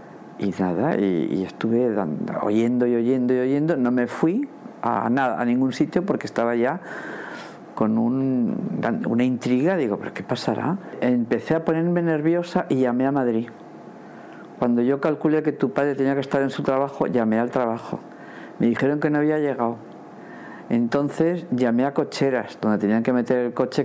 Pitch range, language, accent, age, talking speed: 115-140 Hz, Spanish, Spanish, 50-69, 170 wpm